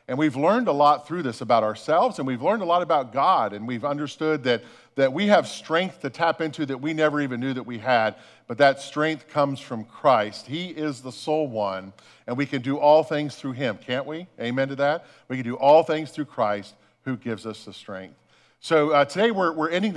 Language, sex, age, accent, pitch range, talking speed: English, male, 50-69, American, 120-155 Hz, 230 wpm